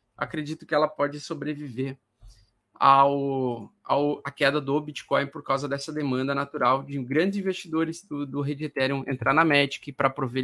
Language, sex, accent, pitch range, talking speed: Portuguese, male, Brazilian, 140-185 Hz, 160 wpm